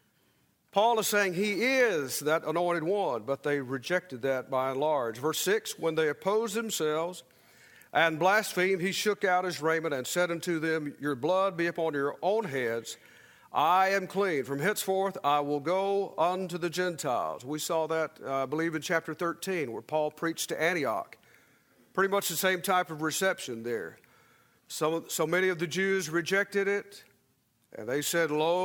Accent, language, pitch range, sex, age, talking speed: American, English, 155-190 Hz, male, 50-69, 175 wpm